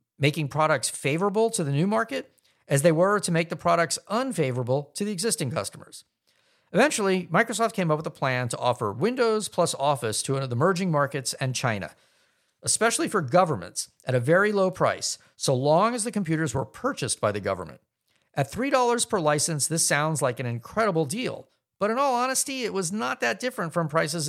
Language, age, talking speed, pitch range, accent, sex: English, 50-69, 190 wpm, 130-200 Hz, American, male